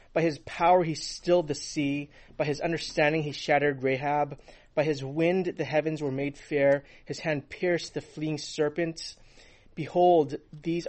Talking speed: 160 wpm